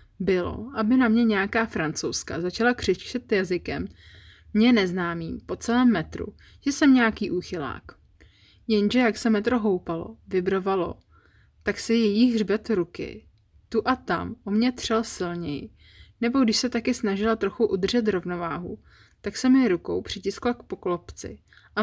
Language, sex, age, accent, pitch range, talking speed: Czech, female, 20-39, native, 165-225 Hz, 145 wpm